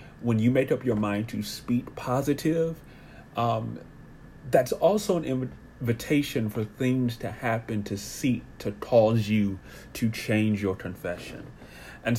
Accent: American